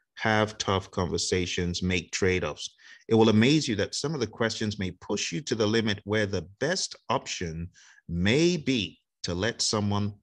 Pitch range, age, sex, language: 90-110 Hz, 30-49, male, English